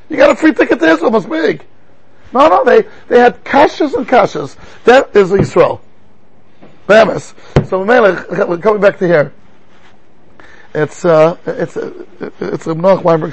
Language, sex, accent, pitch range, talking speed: English, male, American, 160-210 Hz, 155 wpm